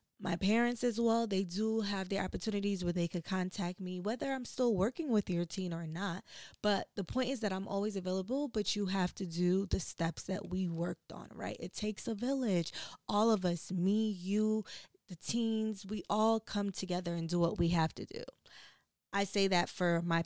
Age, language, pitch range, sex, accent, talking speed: 20-39, English, 180-220 Hz, female, American, 205 wpm